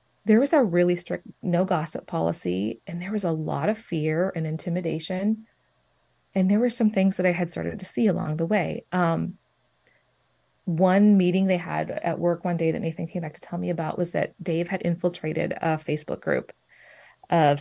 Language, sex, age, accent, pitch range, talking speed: English, female, 30-49, American, 165-190 Hz, 195 wpm